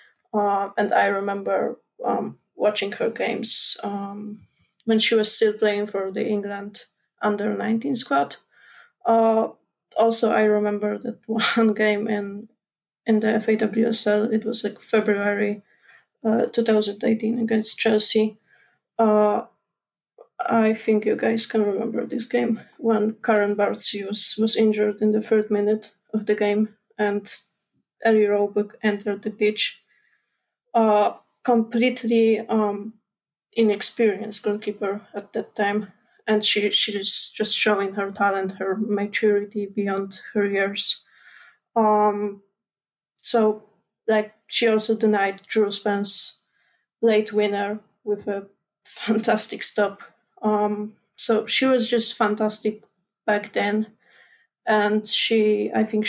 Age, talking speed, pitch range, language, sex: 20-39, 130 wpm, 205-220 Hz, English, female